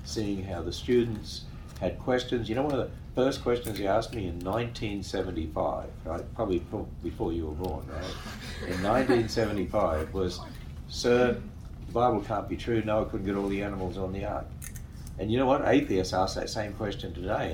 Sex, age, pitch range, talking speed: male, 60-79, 80-110 Hz, 180 wpm